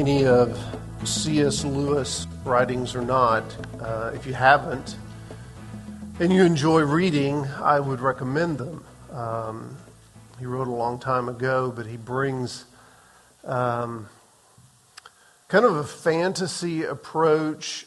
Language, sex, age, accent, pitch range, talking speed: English, male, 50-69, American, 125-155 Hz, 120 wpm